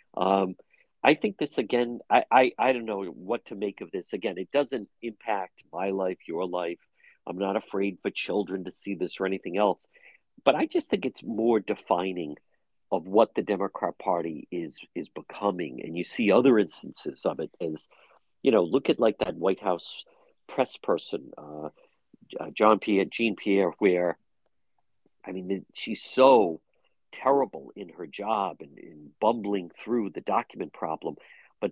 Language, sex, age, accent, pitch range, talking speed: English, male, 50-69, American, 95-160 Hz, 170 wpm